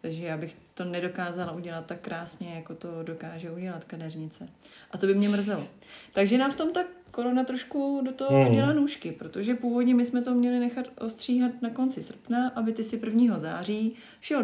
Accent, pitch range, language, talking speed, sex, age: native, 165-210 Hz, Czech, 190 wpm, female, 30-49